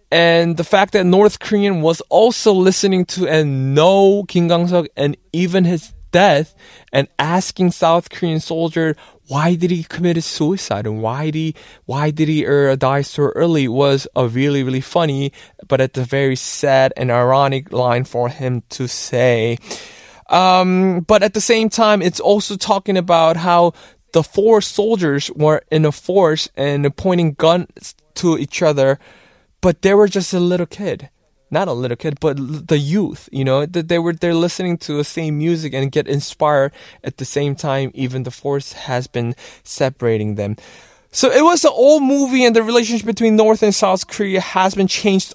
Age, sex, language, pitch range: 20-39, male, Korean, 140-190 Hz